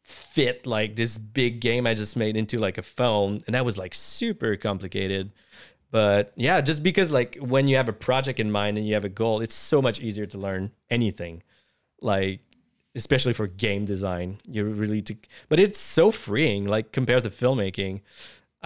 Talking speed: 185 wpm